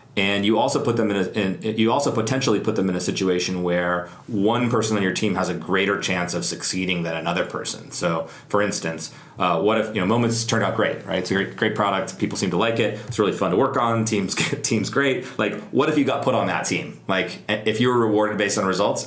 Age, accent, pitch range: 30-49, American, 90-115 Hz